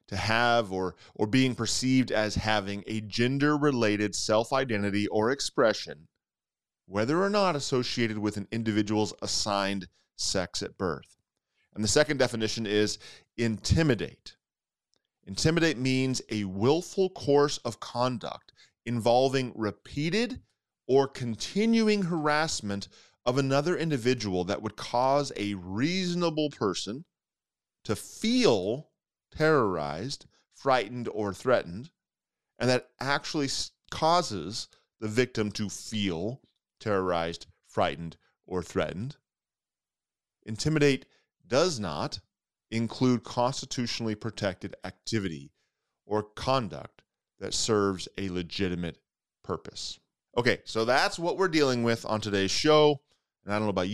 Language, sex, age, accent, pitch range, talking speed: English, male, 30-49, American, 105-135 Hz, 110 wpm